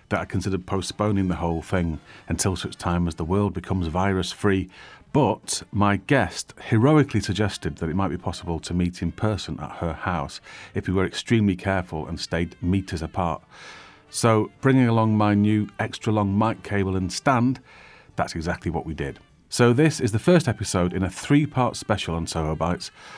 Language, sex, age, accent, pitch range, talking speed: English, male, 40-59, British, 85-110 Hz, 180 wpm